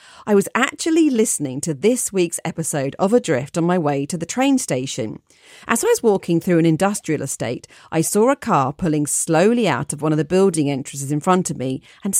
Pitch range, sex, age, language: 150-210 Hz, female, 40-59, English